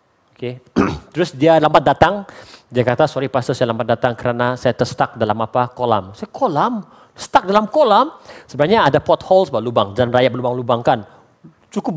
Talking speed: 160 wpm